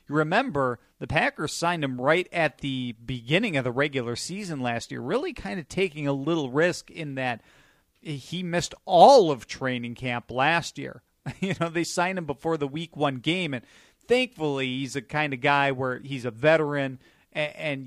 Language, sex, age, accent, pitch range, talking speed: English, male, 40-59, American, 125-155 Hz, 185 wpm